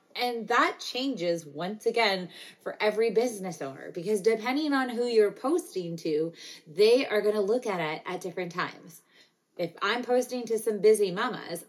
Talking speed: 170 wpm